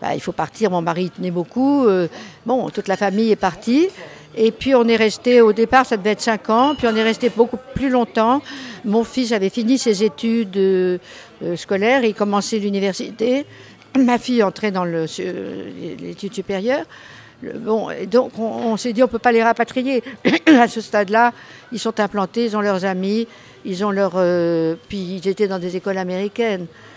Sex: female